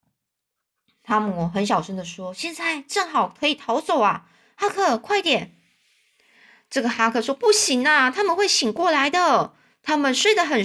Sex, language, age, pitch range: female, Chinese, 20-39, 205-275 Hz